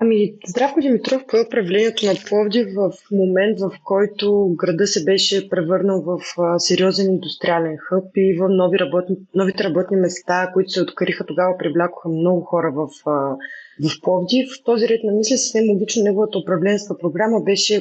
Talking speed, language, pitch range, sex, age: 155 wpm, Bulgarian, 175-210 Hz, female, 20-39